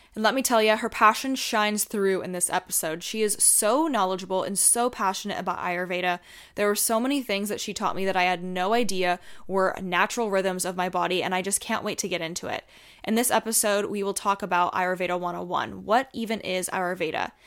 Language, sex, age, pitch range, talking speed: English, female, 20-39, 185-225 Hz, 215 wpm